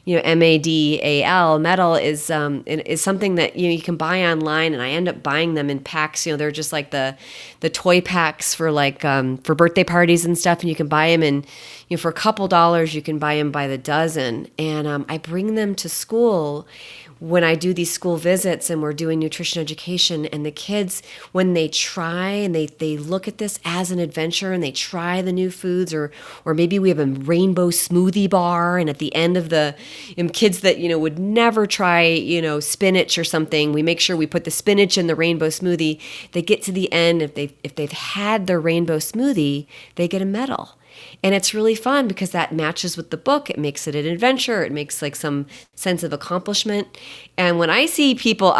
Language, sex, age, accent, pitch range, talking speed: English, female, 30-49, American, 155-195 Hz, 220 wpm